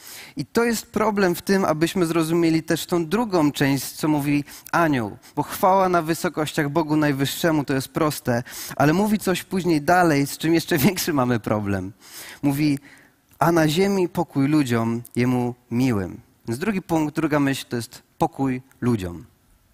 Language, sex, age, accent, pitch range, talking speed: Polish, male, 30-49, native, 130-170 Hz, 160 wpm